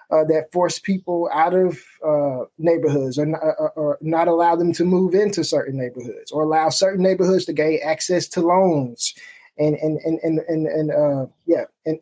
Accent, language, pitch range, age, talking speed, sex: American, English, 155-190 Hz, 20-39, 185 wpm, male